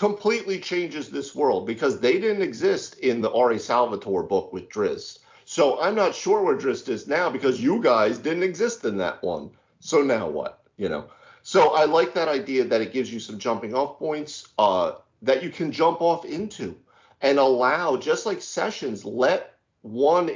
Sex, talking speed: male, 185 wpm